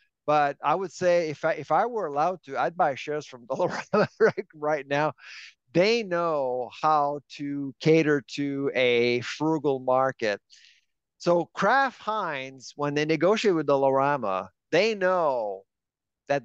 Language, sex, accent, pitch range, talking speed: English, male, American, 140-175 Hz, 140 wpm